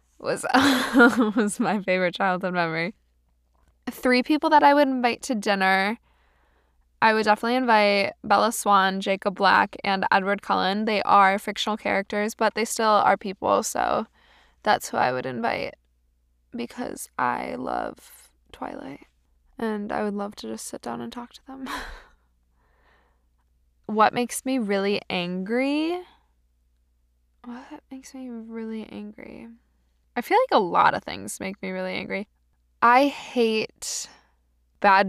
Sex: female